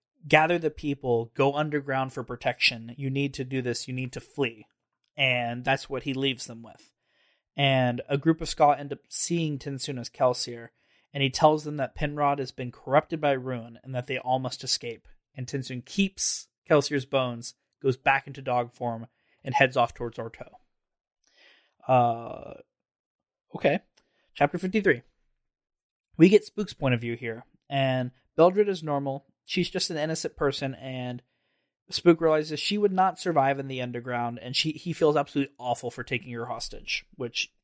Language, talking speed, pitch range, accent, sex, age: English, 170 wpm, 125-155 Hz, American, male, 20-39